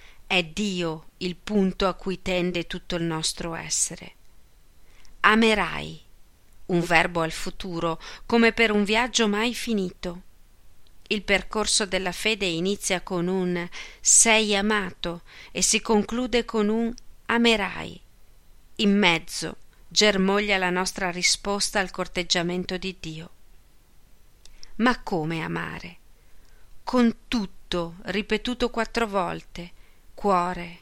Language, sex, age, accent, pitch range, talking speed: Italian, female, 40-59, native, 175-210 Hz, 110 wpm